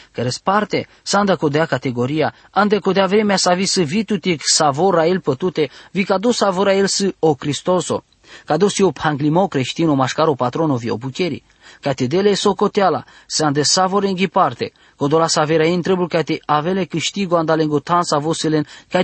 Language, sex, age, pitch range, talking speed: English, male, 20-39, 155-195 Hz, 165 wpm